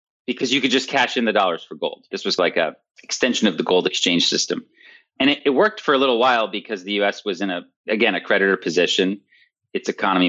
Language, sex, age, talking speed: English, male, 30-49, 235 wpm